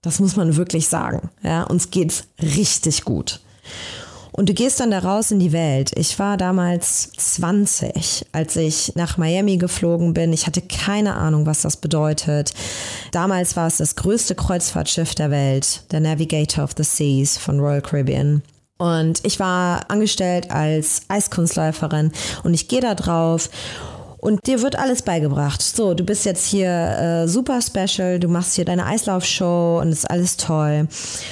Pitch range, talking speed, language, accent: 155-205 Hz, 165 wpm, German, German